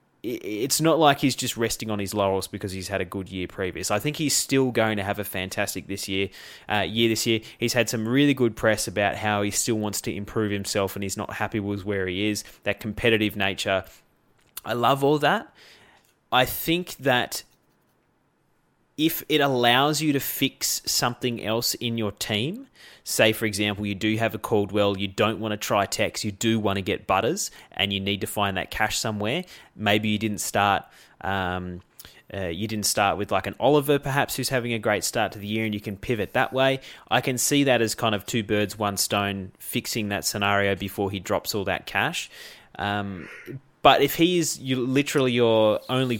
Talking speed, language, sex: 205 wpm, English, male